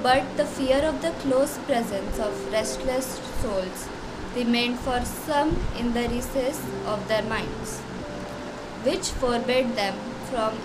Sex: female